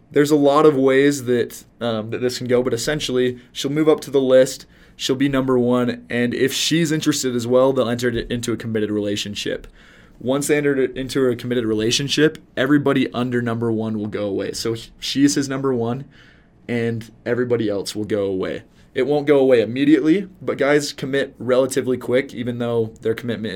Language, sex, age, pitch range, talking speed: English, male, 20-39, 110-130 Hz, 190 wpm